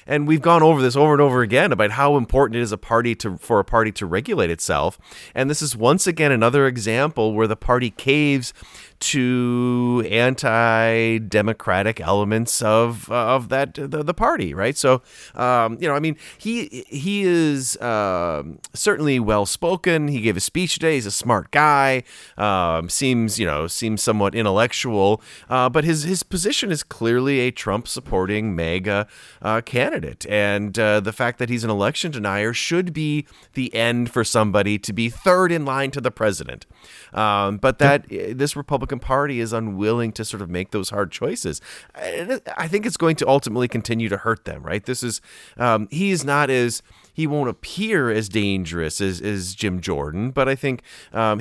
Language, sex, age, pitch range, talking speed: English, male, 30-49, 105-140 Hz, 180 wpm